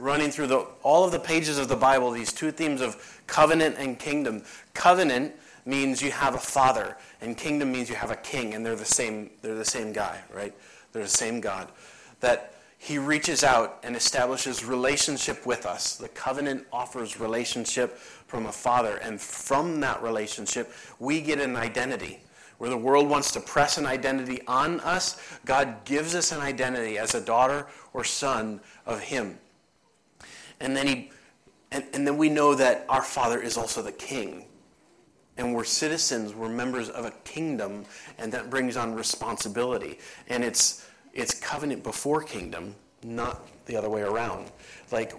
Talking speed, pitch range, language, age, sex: 165 wpm, 115-140 Hz, English, 30-49, male